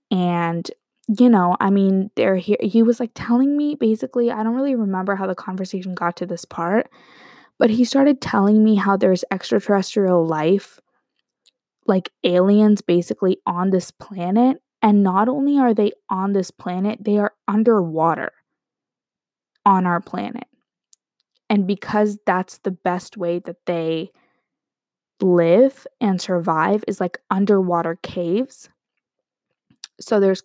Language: English